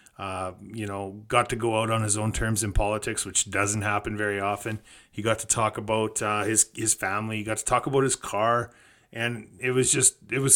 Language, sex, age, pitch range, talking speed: English, male, 30-49, 105-120 Hz, 225 wpm